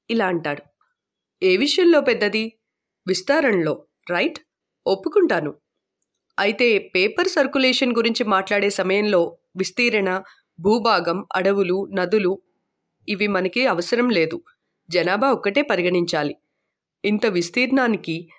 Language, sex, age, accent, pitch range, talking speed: Telugu, female, 20-39, native, 190-270 Hz, 90 wpm